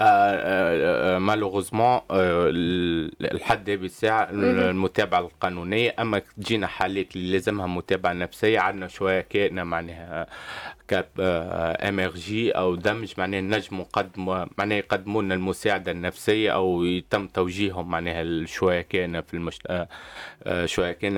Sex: male